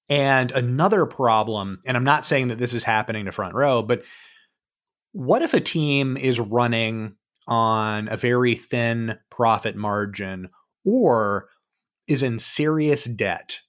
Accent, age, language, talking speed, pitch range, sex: American, 30-49, English, 140 wpm, 115-160 Hz, male